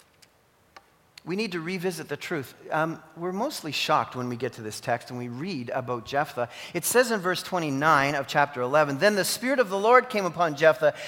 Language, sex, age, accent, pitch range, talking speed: English, male, 40-59, American, 175-240 Hz, 205 wpm